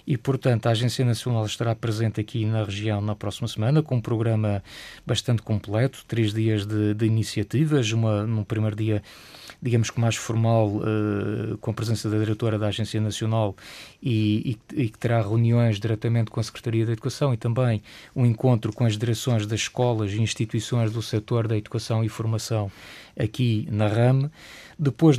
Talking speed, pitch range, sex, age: 170 wpm, 110-125 Hz, male, 20-39